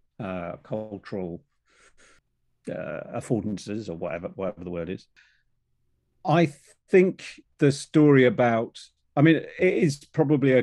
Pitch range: 105-140 Hz